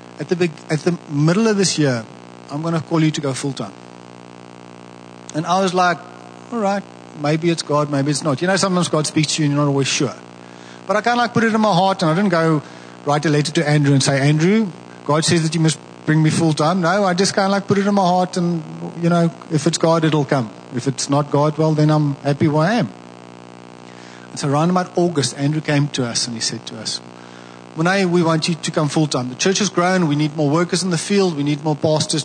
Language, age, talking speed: English, 50-69, 250 wpm